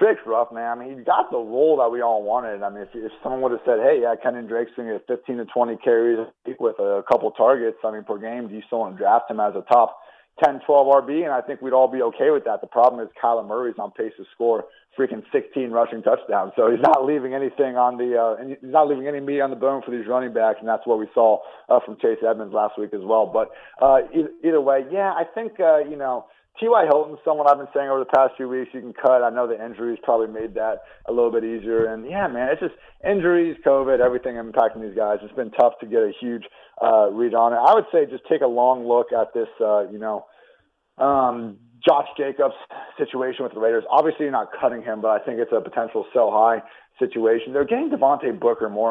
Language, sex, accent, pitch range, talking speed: English, male, American, 115-145 Hz, 255 wpm